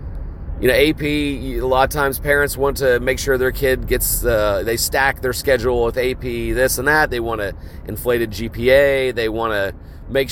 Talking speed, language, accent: 200 wpm, English, American